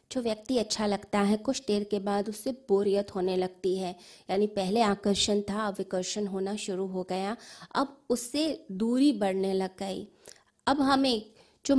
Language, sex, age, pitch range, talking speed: Hindi, female, 20-39, 195-245 Hz, 85 wpm